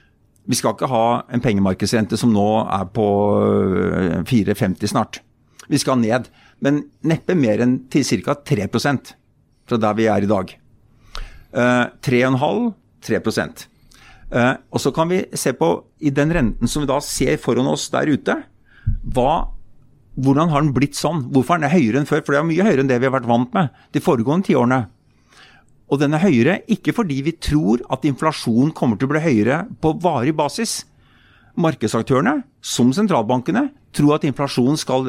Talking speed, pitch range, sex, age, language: 170 wpm, 120-155 Hz, male, 50-69, English